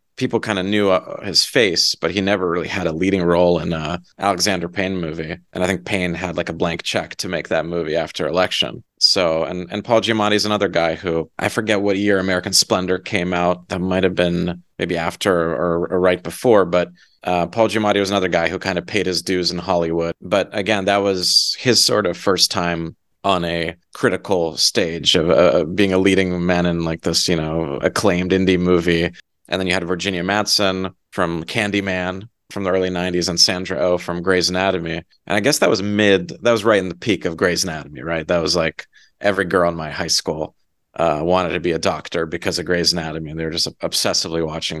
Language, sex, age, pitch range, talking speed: English, male, 30-49, 85-95 Hz, 215 wpm